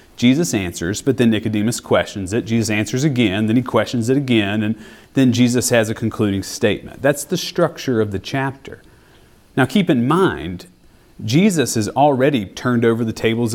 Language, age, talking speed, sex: English, 30-49, 175 wpm, male